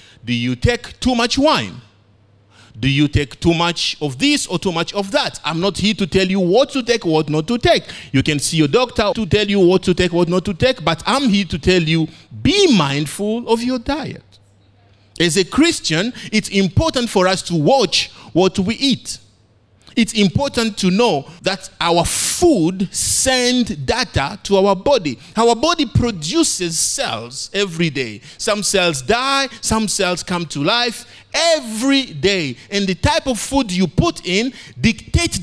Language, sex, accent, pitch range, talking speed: English, male, Nigerian, 160-240 Hz, 180 wpm